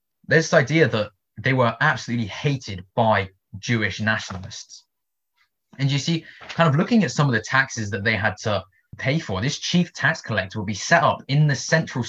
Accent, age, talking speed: British, 20-39, 190 wpm